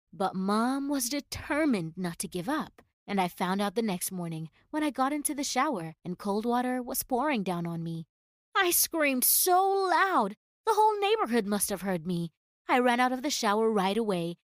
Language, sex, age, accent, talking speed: English, female, 30-49, American, 200 wpm